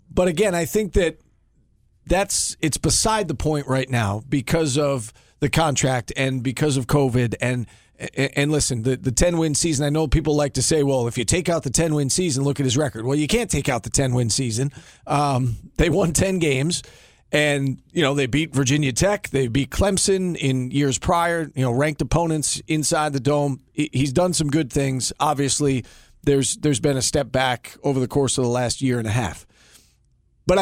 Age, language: 40-59, English